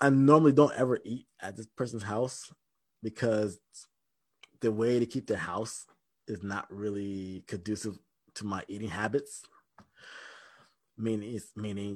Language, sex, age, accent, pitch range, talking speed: English, male, 20-39, American, 110-150 Hz, 130 wpm